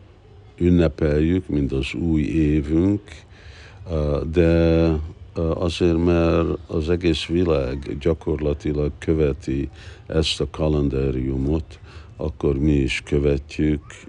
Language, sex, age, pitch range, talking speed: Hungarian, male, 60-79, 75-90 Hz, 85 wpm